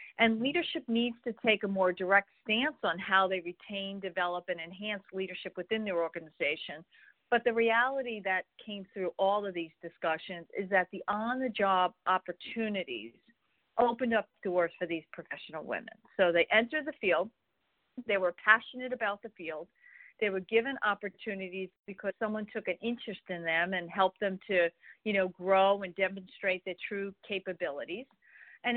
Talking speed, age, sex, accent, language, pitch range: 160 wpm, 50-69, female, American, English, 185-225 Hz